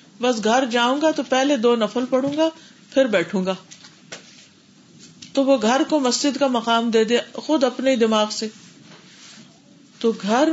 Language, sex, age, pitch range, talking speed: Urdu, female, 40-59, 210-275 Hz, 160 wpm